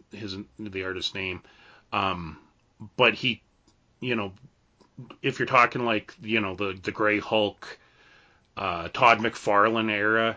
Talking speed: 135 wpm